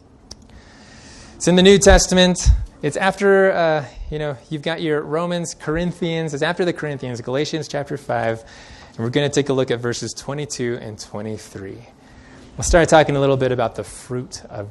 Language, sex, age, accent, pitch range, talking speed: English, male, 20-39, American, 125-180 Hz, 180 wpm